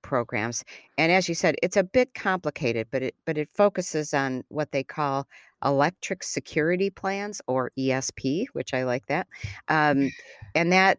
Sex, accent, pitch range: female, American, 130-165 Hz